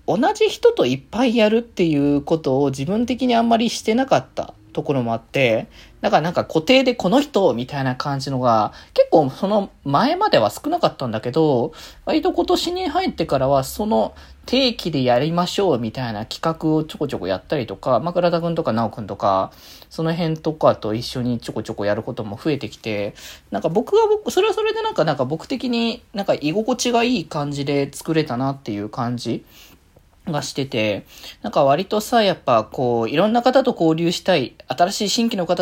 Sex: male